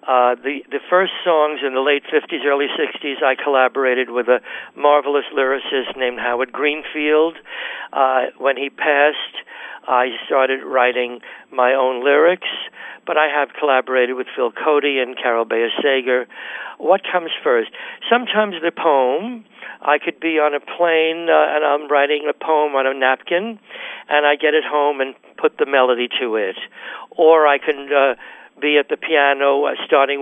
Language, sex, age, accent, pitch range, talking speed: English, male, 60-79, American, 130-170 Hz, 160 wpm